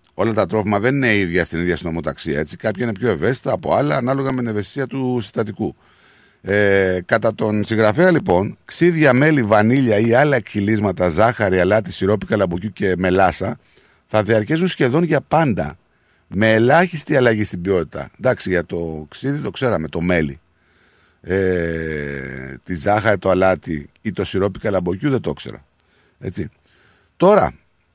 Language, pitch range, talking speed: Greek, 95-150 Hz, 150 wpm